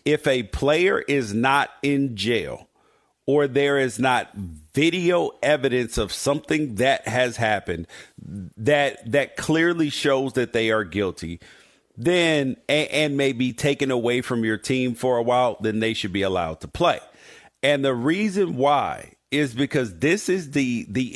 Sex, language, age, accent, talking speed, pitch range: male, English, 40-59, American, 160 wpm, 115-140 Hz